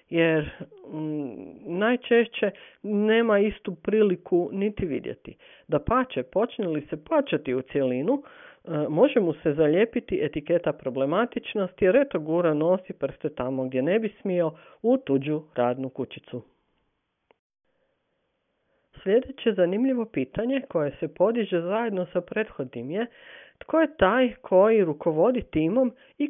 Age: 50-69